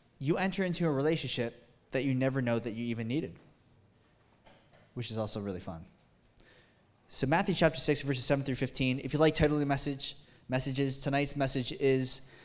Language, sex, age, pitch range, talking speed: English, male, 20-39, 135-175 Hz, 175 wpm